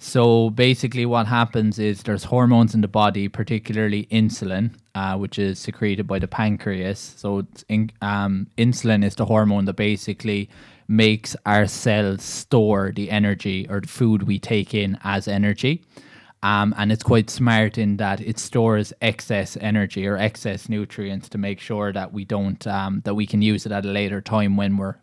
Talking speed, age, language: 180 wpm, 20-39, English